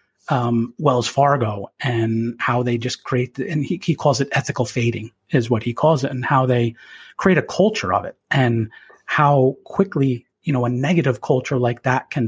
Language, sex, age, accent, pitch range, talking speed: English, male, 30-49, American, 125-150 Hz, 195 wpm